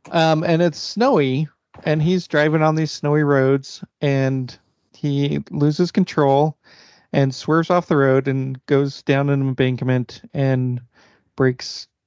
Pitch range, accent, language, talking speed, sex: 130-145 Hz, American, English, 135 wpm, male